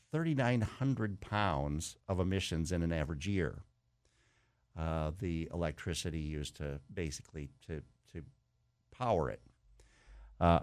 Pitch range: 85-115 Hz